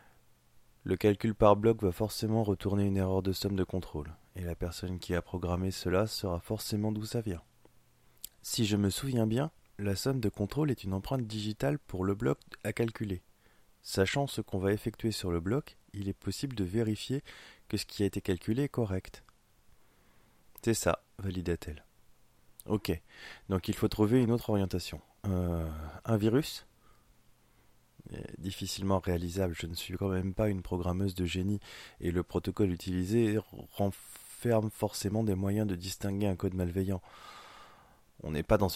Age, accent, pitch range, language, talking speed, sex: 20-39, French, 90-110 Hz, French, 165 wpm, male